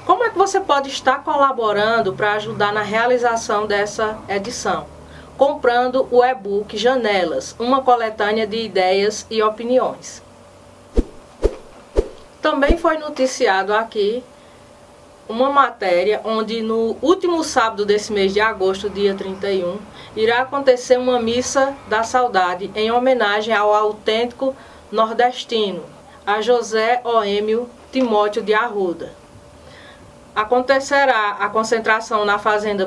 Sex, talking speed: female, 110 wpm